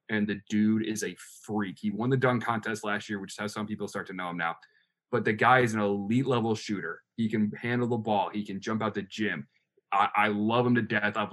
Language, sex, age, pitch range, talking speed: English, male, 20-39, 105-125 Hz, 255 wpm